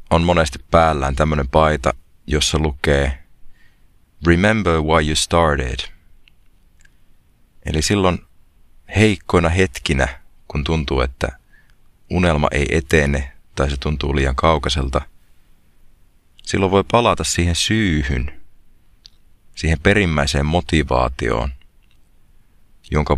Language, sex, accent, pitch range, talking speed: Finnish, male, native, 70-85 Hz, 90 wpm